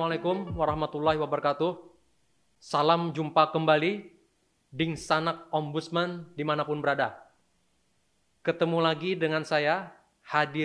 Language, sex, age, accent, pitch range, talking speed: Indonesian, male, 20-39, native, 130-165 Hz, 85 wpm